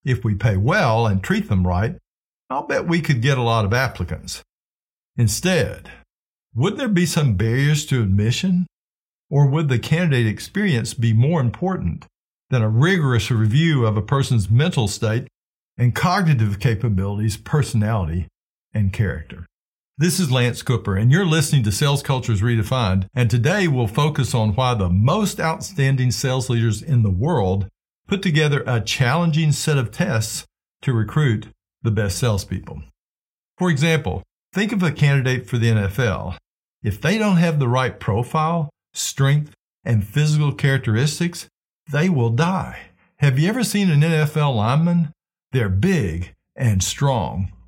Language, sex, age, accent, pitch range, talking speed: English, male, 50-69, American, 110-160 Hz, 150 wpm